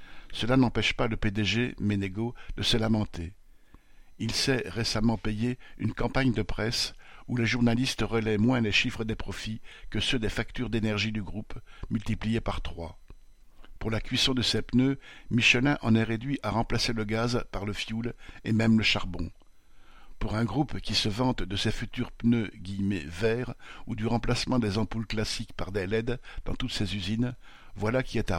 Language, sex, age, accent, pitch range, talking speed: French, male, 60-79, French, 105-120 Hz, 185 wpm